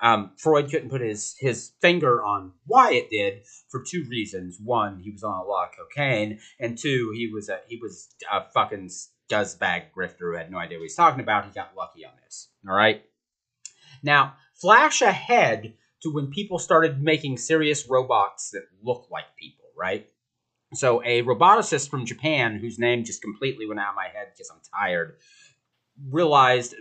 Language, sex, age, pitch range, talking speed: English, male, 30-49, 120-165 Hz, 185 wpm